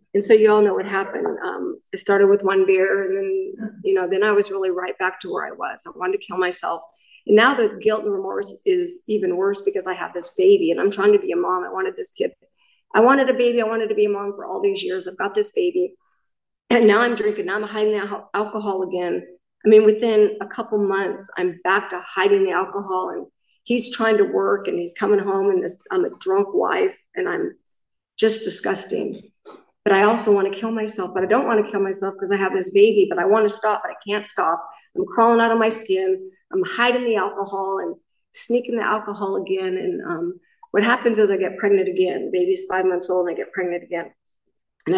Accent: American